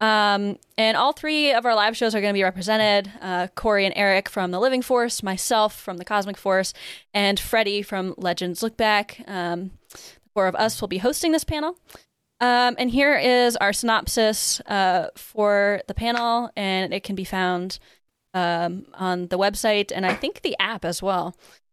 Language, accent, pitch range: English, American, 185-235 Hz